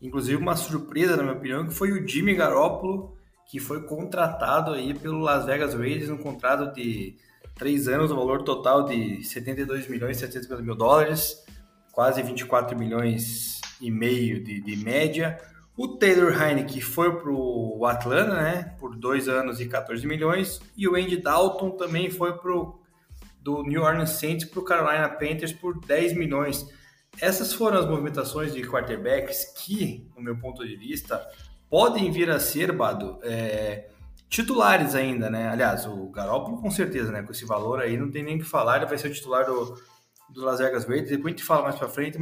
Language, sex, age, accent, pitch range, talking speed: Portuguese, male, 20-39, Brazilian, 125-175 Hz, 185 wpm